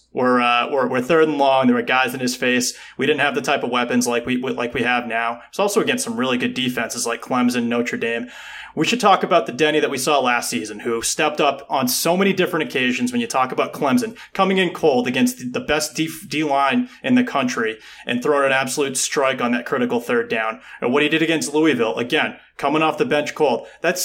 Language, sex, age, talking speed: English, male, 30-49, 240 wpm